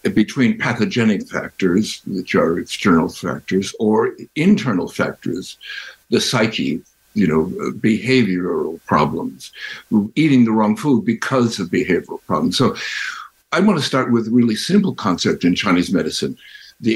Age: 60-79